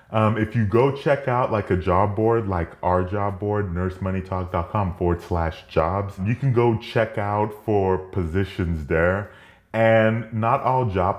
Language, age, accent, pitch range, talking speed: English, 30-49, American, 85-110 Hz, 160 wpm